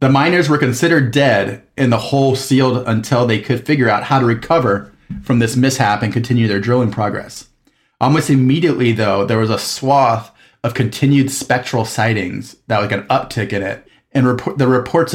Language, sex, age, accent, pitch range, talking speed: English, male, 30-49, American, 110-130 Hz, 180 wpm